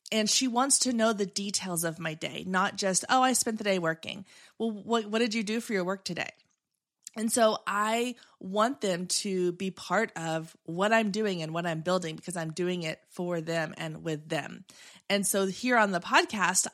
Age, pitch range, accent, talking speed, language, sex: 30-49, 170-220 Hz, American, 210 wpm, English, female